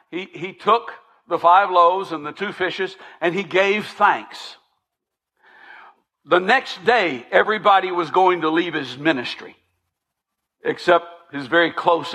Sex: male